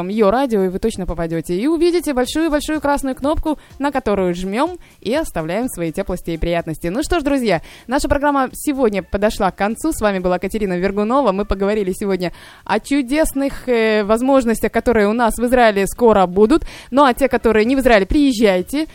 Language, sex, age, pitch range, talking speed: Russian, female, 20-39, 185-245 Hz, 180 wpm